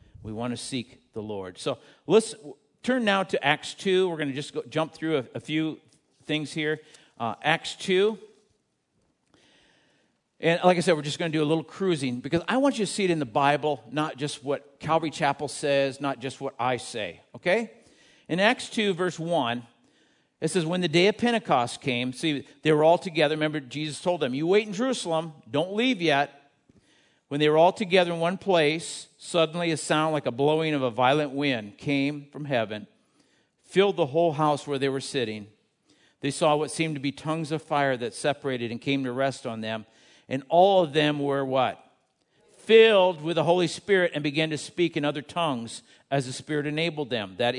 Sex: male